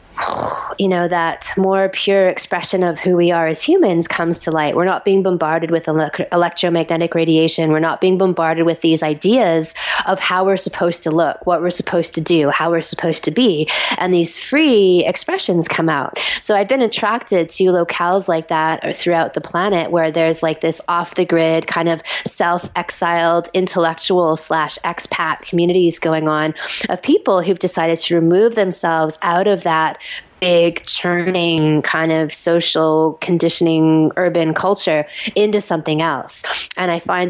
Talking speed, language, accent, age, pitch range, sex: 170 wpm, English, American, 20-39, 165-185 Hz, female